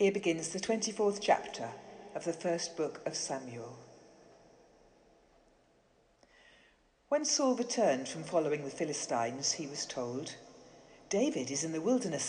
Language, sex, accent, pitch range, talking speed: English, female, British, 160-220 Hz, 125 wpm